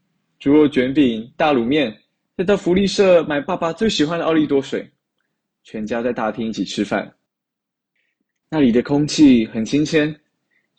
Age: 20-39